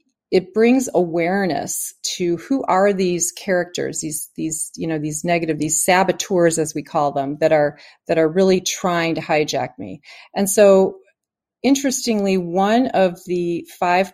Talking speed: 155 wpm